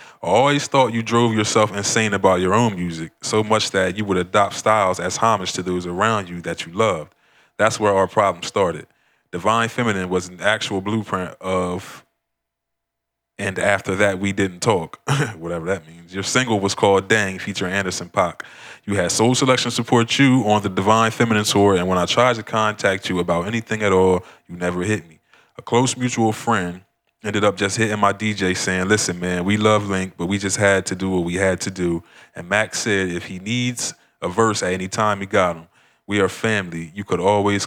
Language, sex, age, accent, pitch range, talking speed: English, male, 20-39, American, 90-110 Hz, 205 wpm